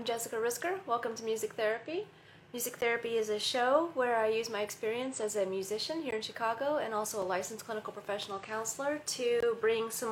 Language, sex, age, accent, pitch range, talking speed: English, female, 30-49, American, 195-235 Hz, 195 wpm